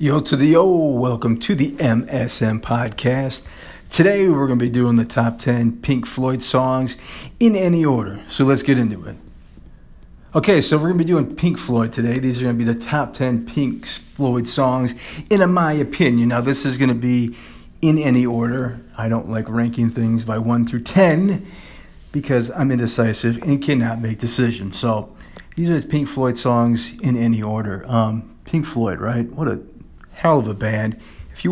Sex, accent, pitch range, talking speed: male, American, 110-130 Hz, 190 wpm